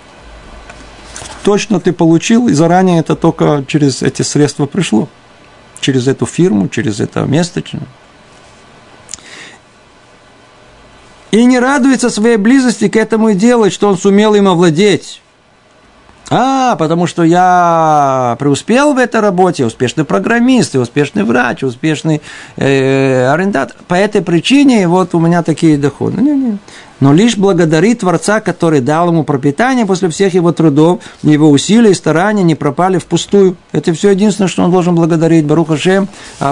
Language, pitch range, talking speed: Russian, 145-200 Hz, 135 wpm